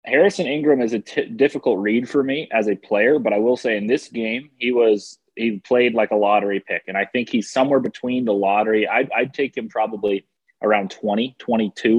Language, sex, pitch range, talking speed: English, male, 110-130 Hz, 215 wpm